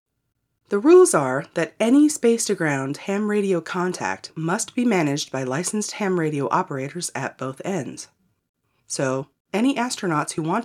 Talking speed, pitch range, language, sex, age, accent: 140 wpm, 140-205 Hz, English, female, 30-49, American